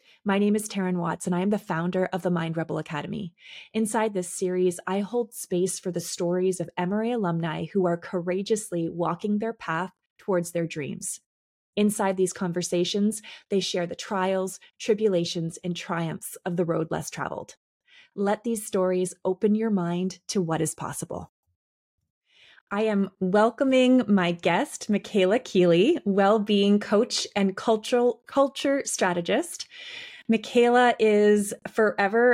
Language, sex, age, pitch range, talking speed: English, female, 20-39, 180-220 Hz, 145 wpm